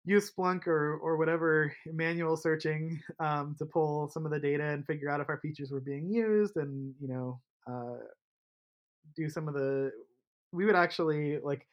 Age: 20-39